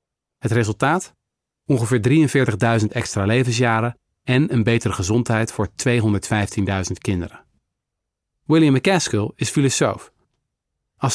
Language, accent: Dutch, Dutch